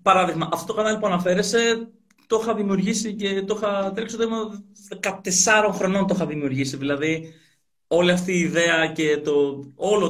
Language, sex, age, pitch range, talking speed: Greek, male, 20-39, 155-220 Hz, 160 wpm